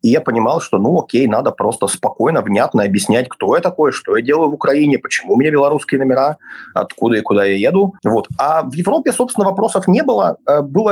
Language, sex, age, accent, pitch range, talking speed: Russian, male, 30-49, native, 115-175 Hz, 210 wpm